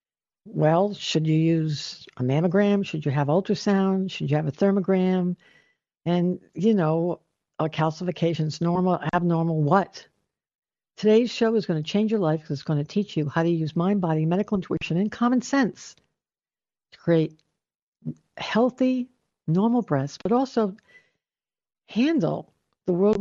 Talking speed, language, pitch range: 145 wpm, English, 155-210 Hz